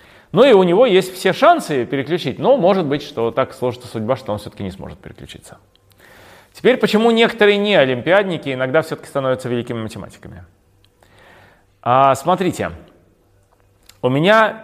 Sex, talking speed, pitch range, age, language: male, 140 wpm, 105-180 Hz, 30-49, Russian